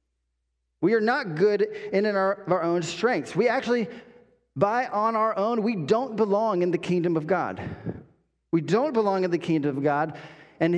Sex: male